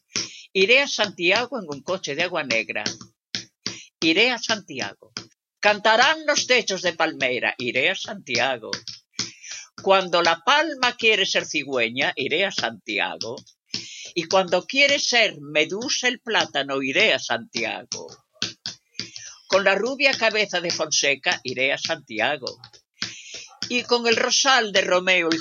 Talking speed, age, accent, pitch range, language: 130 wpm, 50-69, Spanish, 150-240 Hz, Spanish